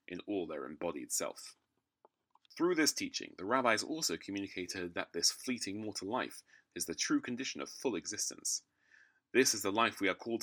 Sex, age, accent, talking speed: male, 30-49, British, 180 wpm